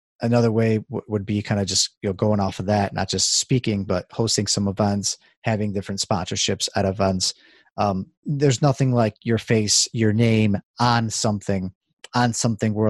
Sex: male